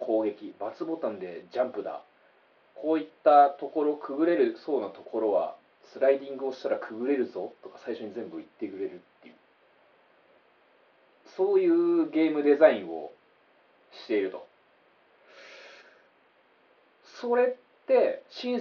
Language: Japanese